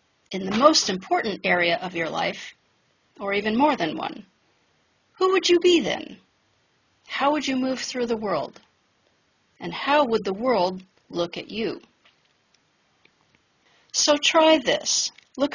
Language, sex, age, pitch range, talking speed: English, female, 40-59, 190-280 Hz, 145 wpm